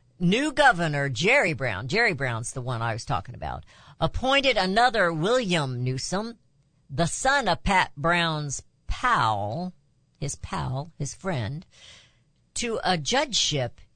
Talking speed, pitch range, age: 125 wpm, 135-215 Hz, 50-69